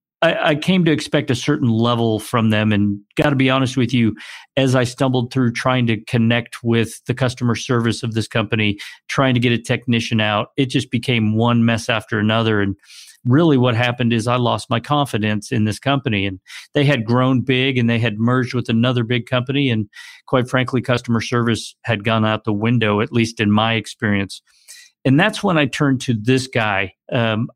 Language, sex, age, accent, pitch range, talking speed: English, male, 50-69, American, 115-130 Hz, 200 wpm